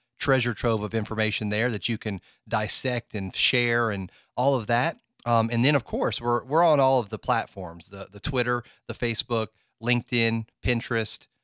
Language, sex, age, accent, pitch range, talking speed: English, male, 30-49, American, 105-120 Hz, 180 wpm